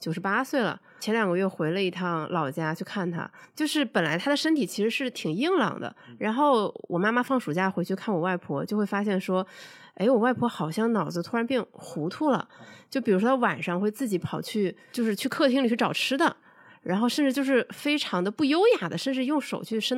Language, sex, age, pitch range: Chinese, female, 20-39, 180-250 Hz